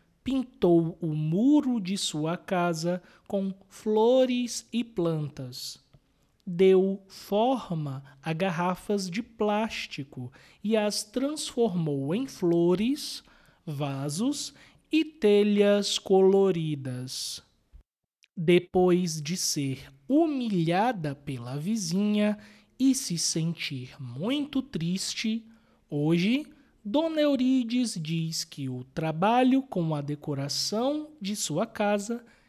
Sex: male